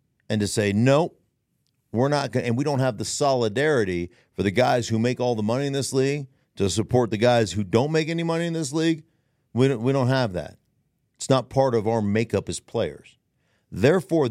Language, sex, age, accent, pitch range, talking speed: English, male, 50-69, American, 110-145 Hz, 215 wpm